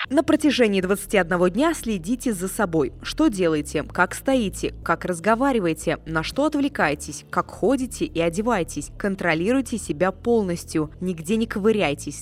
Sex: female